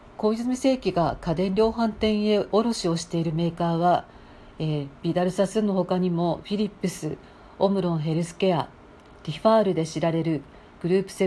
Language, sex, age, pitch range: Japanese, female, 50-69, 165-195 Hz